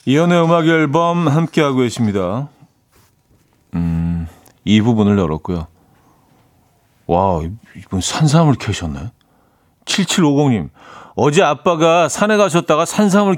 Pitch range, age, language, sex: 105-155 Hz, 40-59, Korean, male